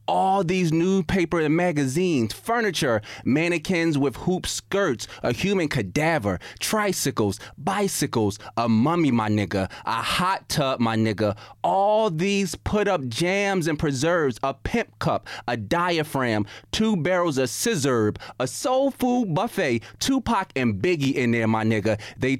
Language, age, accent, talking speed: English, 30-49, American, 140 wpm